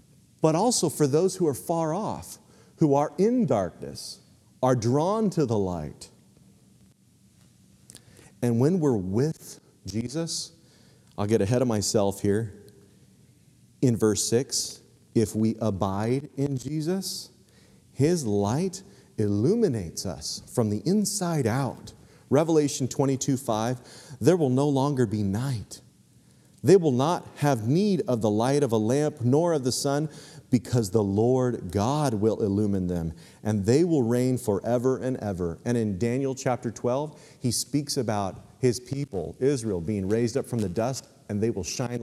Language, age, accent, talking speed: English, 40-59, American, 145 wpm